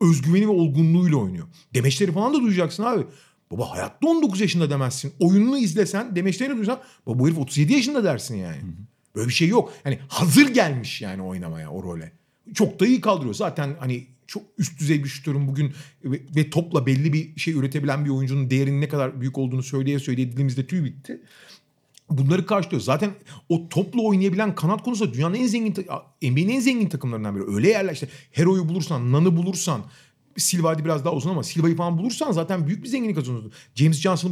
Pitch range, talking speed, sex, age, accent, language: 140-200 Hz, 185 wpm, male, 40-59, native, Turkish